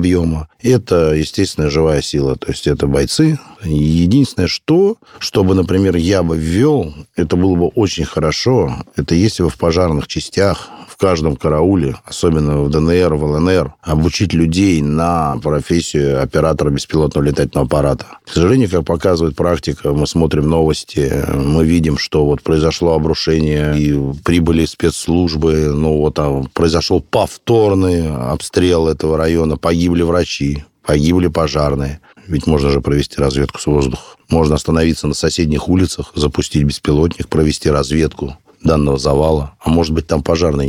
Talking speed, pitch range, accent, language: 140 wpm, 75-85 Hz, native, Russian